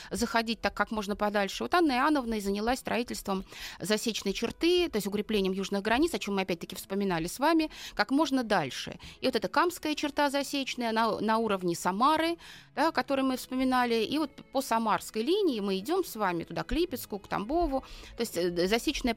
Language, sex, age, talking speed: Russian, female, 30-49, 185 wpm